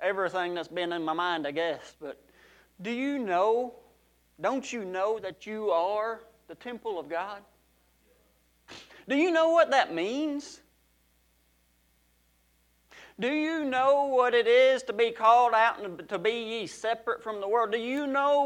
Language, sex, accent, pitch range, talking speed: English, male, American, 190-280 Hz, 155 wpm